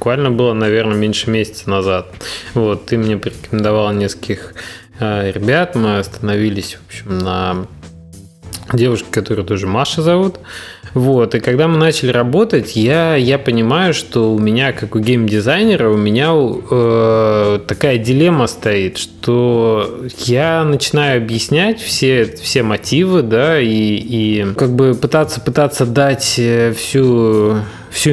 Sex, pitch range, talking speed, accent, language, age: male, 105-130 Hz, 130 wpm, native, Russian, 20-39